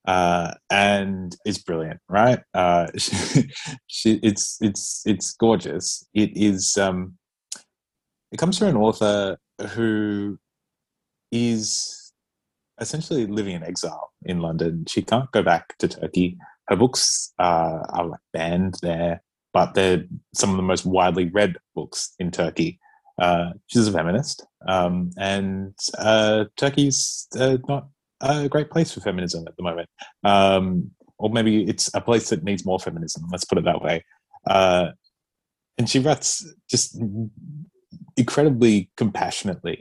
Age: 30-49